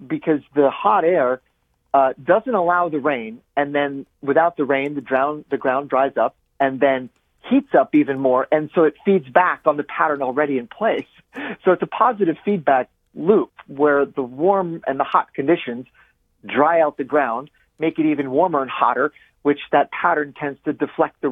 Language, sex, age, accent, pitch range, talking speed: English, male, 40-59, American, 130-155 Hz, 190 wpm